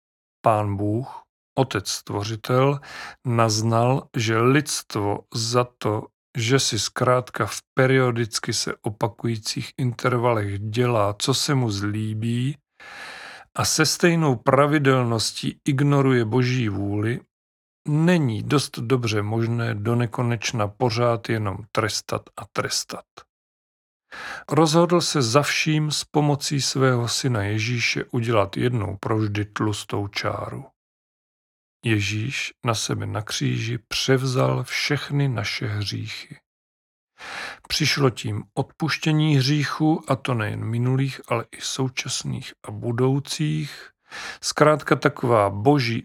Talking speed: 100 wpm